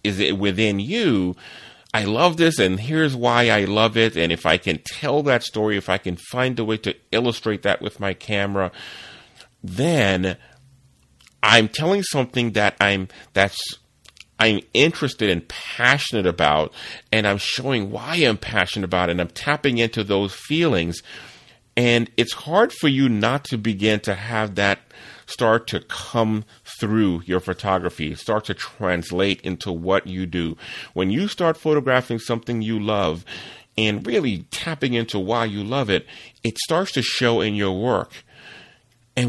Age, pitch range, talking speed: 40-59, 100-130 Hz, 160 wpm